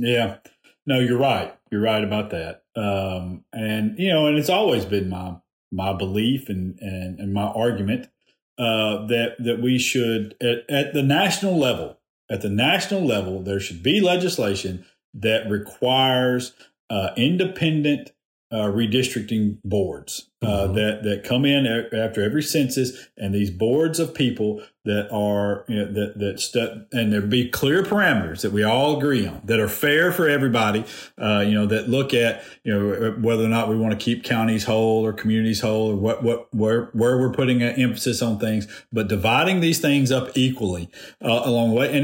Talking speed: 180 wpm